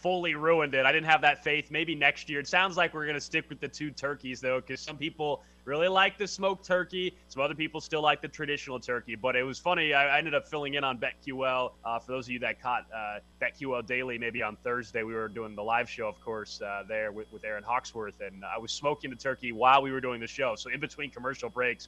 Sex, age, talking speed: male, 20-39, 260 wpm